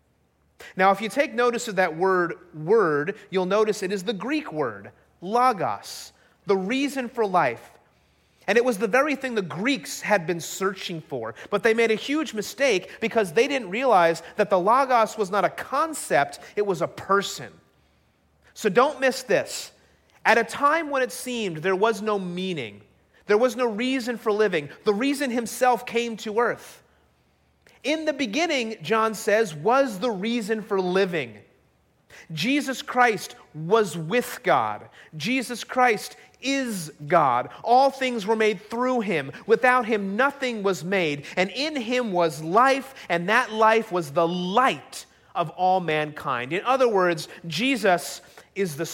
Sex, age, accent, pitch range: male, 30-49, American, 180-250 Hz